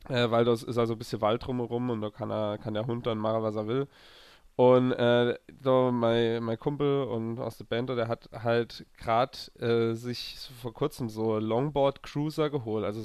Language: German